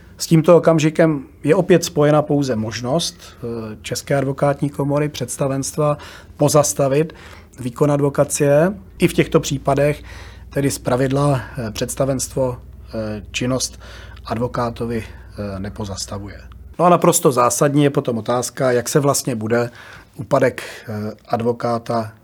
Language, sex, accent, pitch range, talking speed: Czech, male, native, 115-145 Hz, 105 wpm